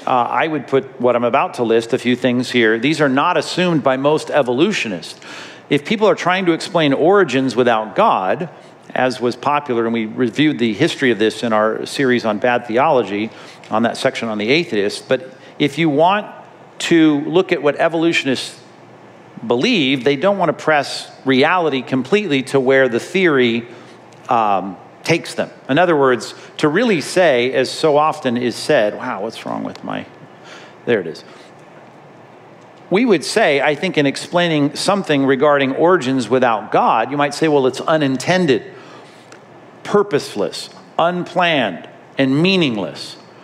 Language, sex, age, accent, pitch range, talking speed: English, male, 50-69, American, 125-165 Hz, 160 wpm